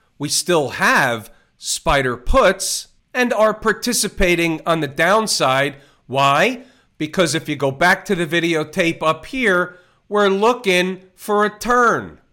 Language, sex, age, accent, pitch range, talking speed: English, male, 40-59, American, 155-195 Hz, 130 wpm